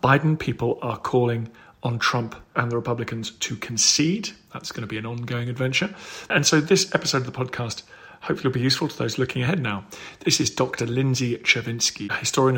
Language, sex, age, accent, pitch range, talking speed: English, male, 40-59, British, 115-145 Hz, 195 wpm